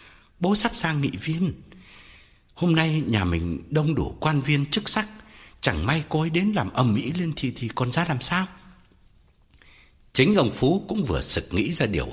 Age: 60-79